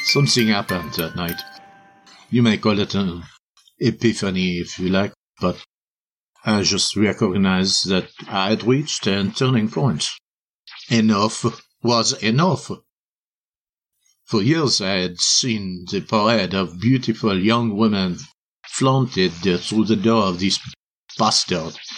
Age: 60-79